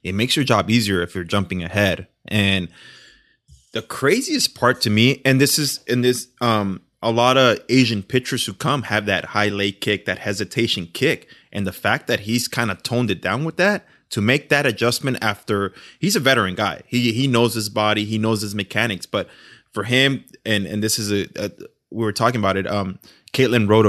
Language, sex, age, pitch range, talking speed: English, male, 20-39, 100-120 Hz, 210 wpm